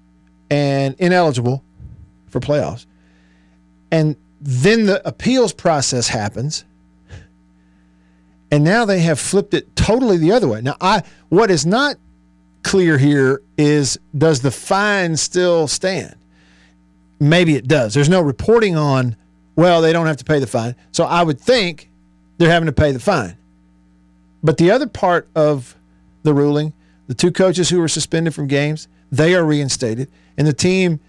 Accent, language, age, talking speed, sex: American, English, 50-69, 155 wpm, male